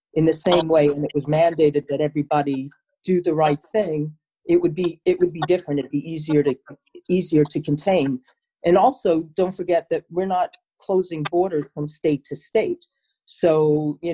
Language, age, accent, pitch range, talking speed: English, 40-59, American, 145-175 Hz, 185 wpm